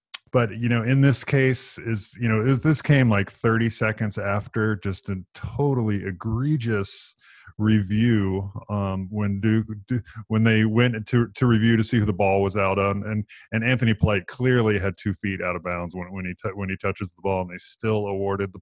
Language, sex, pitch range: English, male, 100-120 Hz